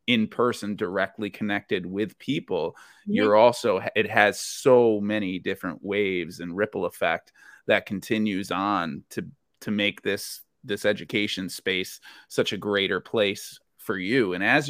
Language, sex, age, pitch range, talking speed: English, male, 30-49, 100-120 Hz, 145 wpm